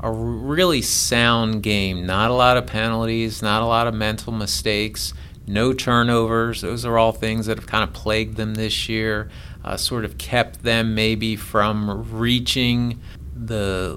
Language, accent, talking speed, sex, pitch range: English, American, 165 wpm, male, 105-120 Hz